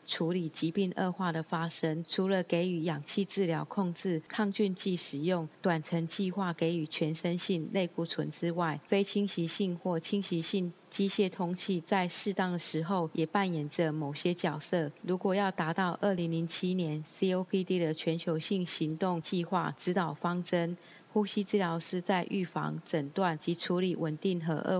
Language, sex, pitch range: Chinese, female, 160-190 Hz